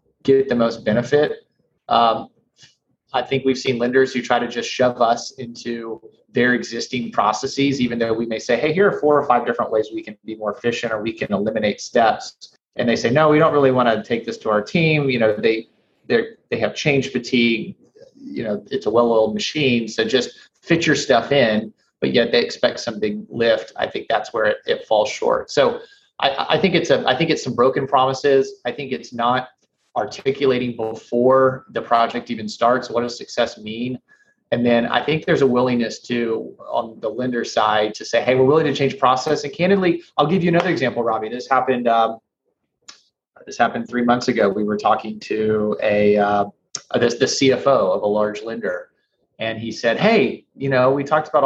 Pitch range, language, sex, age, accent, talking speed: 115-140 Hz, English, male, 30-49, American, 205 wpm